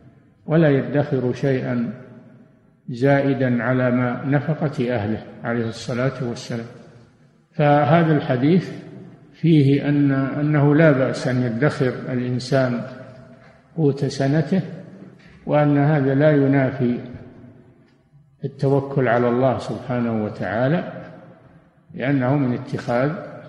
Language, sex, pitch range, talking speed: Arabic, male, 130-150 Hz, 90 wpm